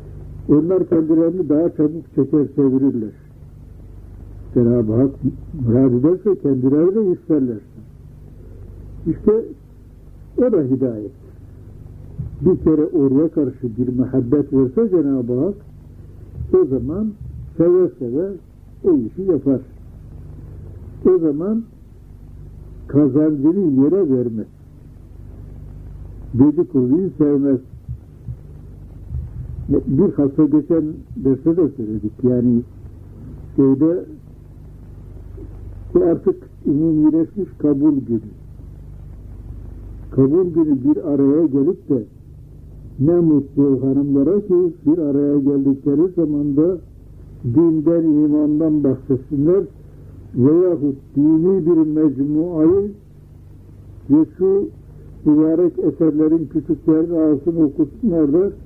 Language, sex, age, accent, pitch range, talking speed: Turkish, male, 60-79, native, 120-165 Hz, 85 wpm